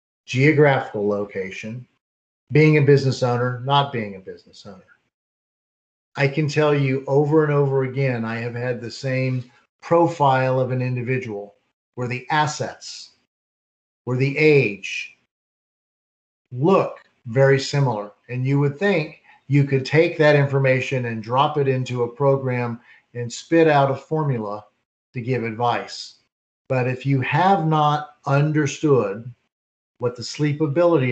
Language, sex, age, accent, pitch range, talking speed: English, male, 40-59, American, 120-150 Hz, 135 wpm